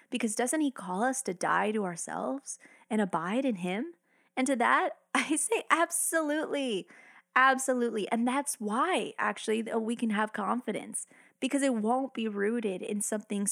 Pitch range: 205-260 Hz